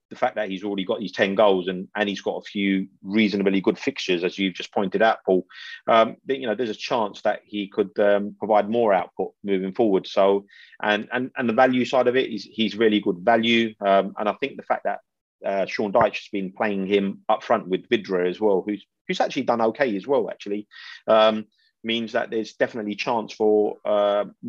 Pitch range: 95-110 Hz